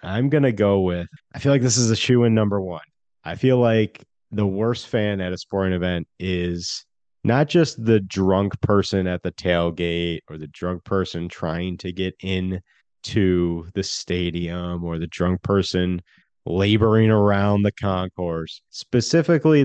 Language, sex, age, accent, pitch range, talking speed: English, male, 30-49, American, 90-120 Hz, 165 wpm